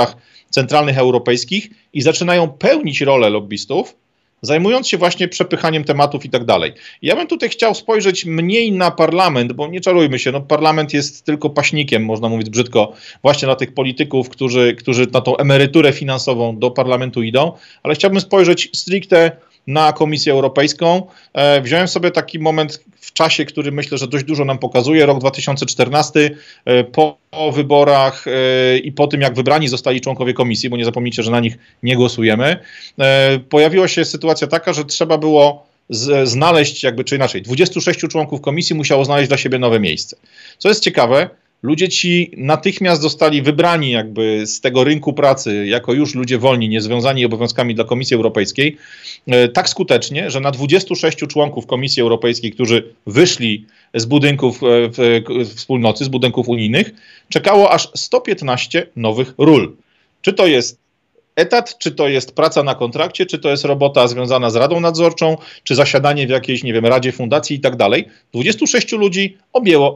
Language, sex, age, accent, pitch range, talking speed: Polish, male, 40-59, native, 125-160 Hz, 160 wpm